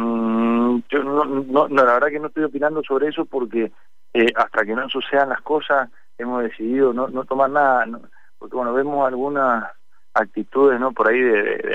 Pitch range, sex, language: 105-130 Hz, male, Spanish